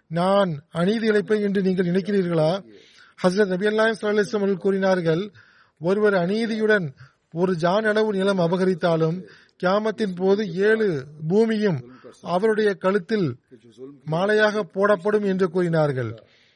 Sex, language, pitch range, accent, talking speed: male, Tamil, 170-210 Hz, native, 80 wpm